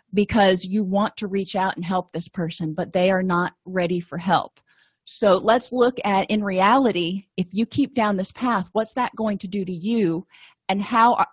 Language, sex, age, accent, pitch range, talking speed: English, female, 30-49, American, 185-240 Hz, 200 wpm